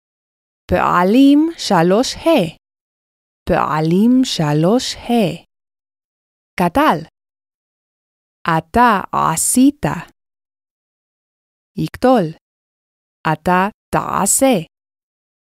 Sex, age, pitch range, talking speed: female, 20-39, 175-275 Hz, 45 wpm